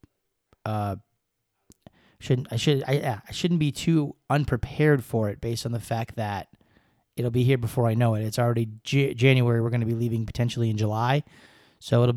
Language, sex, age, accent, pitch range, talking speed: English, male, 30-49, American, 115-130 Hz, 185 wpm